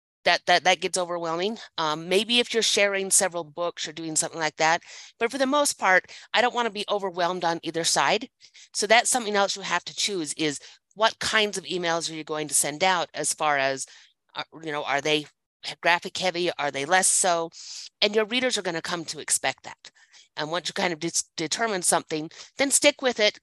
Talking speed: 220 wpm